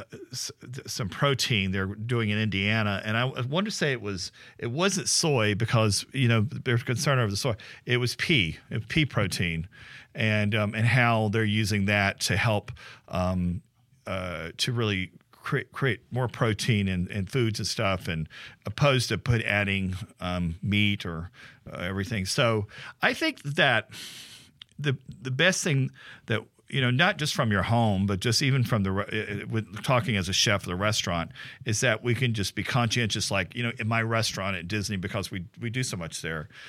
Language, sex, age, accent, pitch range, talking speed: English, male, 40-59, American, 100-125 Hz, 190 wpm